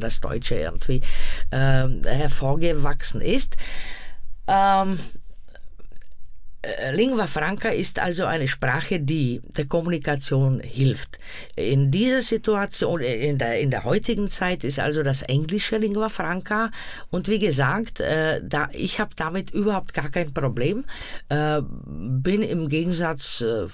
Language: Czech